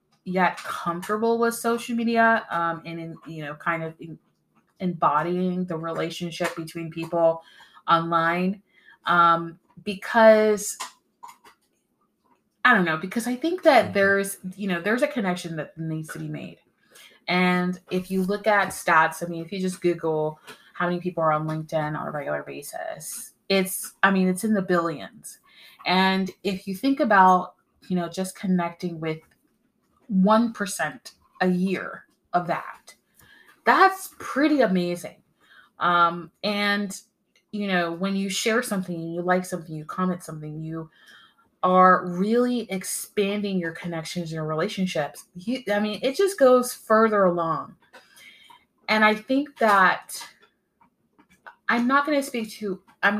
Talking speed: 145 wpm